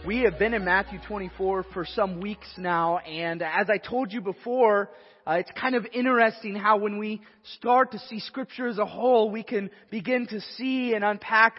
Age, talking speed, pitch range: 30-49, 195 wpm, 190-240 Hz